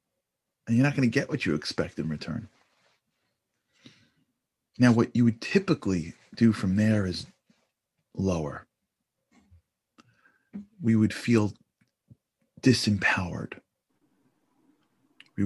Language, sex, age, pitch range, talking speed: English, male, 40-59, 95-140 Hz, 100 wpm